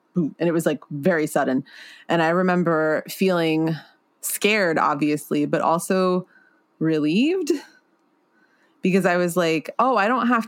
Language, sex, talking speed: English, female, 130 wpm